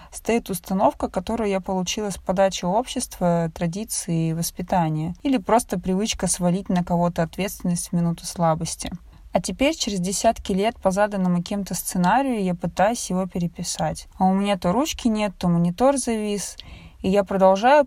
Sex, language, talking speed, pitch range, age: female, Russian, 150 wpm, 180-240 Hz, 20-39